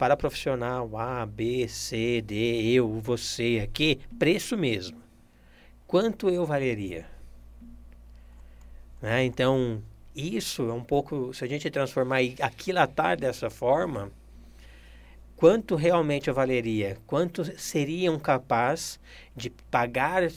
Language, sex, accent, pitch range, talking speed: Portuguese, male, Brazilian, 110-140 Hz, 110 wpm